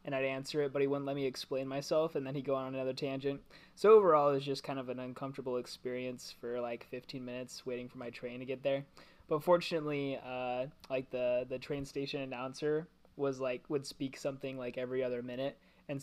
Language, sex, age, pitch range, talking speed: English, male, 20-39, 125-150 Hz, 215 wpm